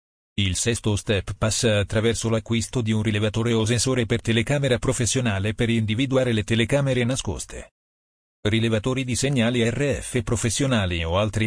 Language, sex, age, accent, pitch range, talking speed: Italian, male, 40-59, native, 100-125 Hz, 135 wpm